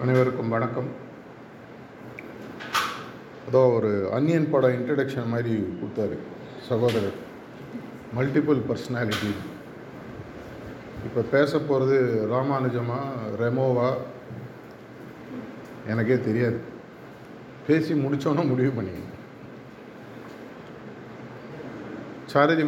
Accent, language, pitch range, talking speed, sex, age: native, Tamil, 120-135 Hz, 65 wpm, male, 50-69